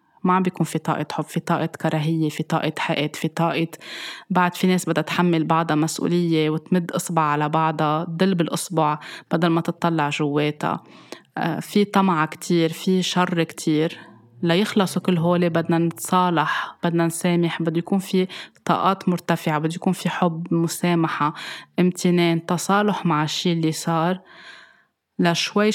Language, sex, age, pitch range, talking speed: Arabic, female, 20-39, 160-180 Hz, 140 wpm